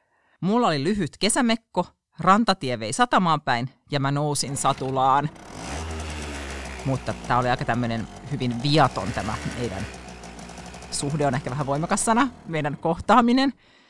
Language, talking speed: Finnish, 125 wpm